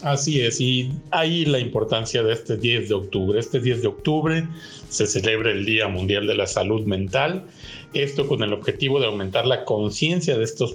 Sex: male